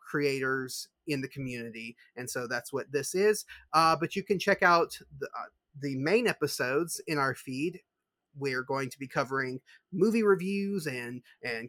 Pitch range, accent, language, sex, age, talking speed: 140-180 Hz, American, English, male, 30-49, 170 wpm